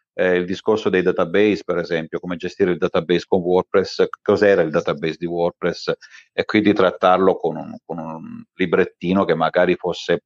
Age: 40-59